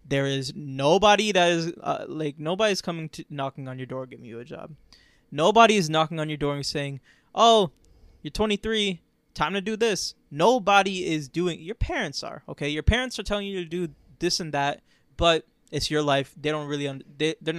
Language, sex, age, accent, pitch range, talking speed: English, male, 20-39, American, 140-175 Hz, 200 wpm